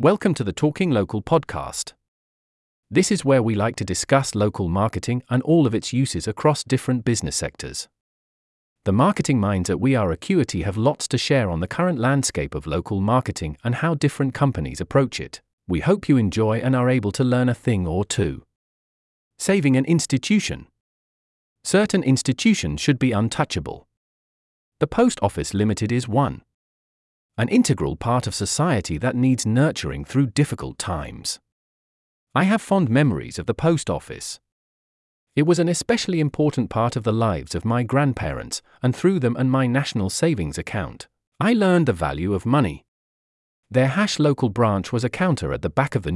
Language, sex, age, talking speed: English, male, 40-59, 170 wpm